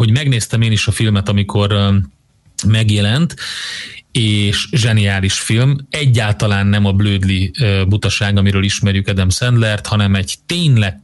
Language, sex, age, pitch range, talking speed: Hungarian, male, 30-49, 100-125 Hz, 125 wpm